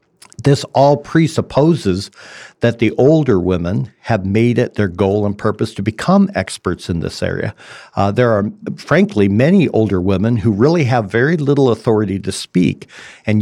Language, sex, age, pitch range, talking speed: English, male, 50-69, 100-130 Hz, 160 wpm